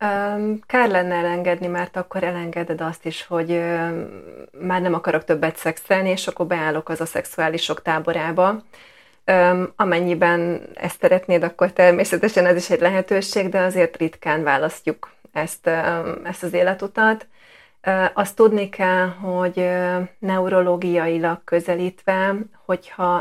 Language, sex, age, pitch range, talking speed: Hungarian, female, 30-49, 165-185 Hz, 115 wpm